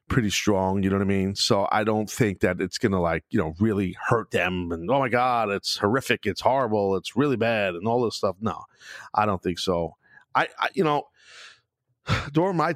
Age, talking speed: 40-59, 215 wpm